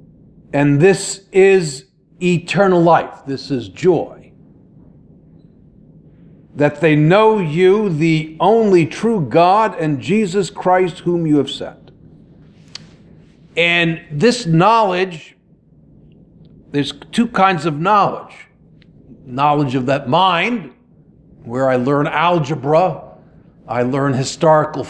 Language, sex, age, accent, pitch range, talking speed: English, male, 50-69, American, 150-185 Hz, 100 wpm